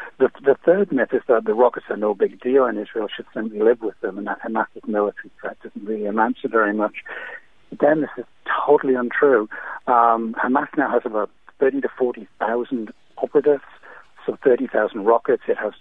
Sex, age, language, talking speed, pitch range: male, 60-79, English, 195 wpm, 110-145 Hz